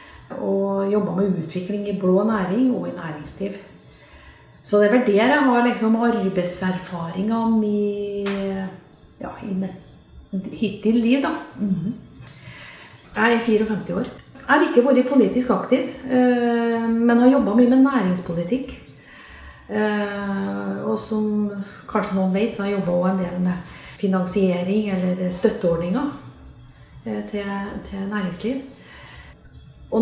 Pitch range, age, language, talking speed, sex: 190-230 Hz, 30-49, English, 120 wpm, female